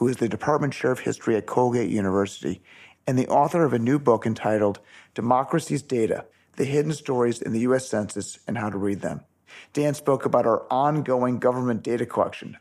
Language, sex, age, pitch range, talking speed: English, male, 40-59, 110-140 Hz, 190 wpm